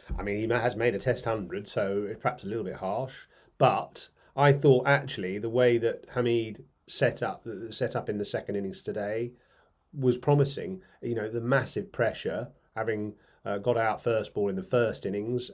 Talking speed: 190 wpm